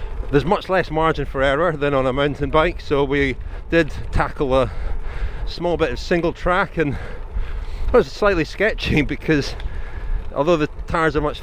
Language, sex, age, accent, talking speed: English, male, 30-49, British, 170 wpm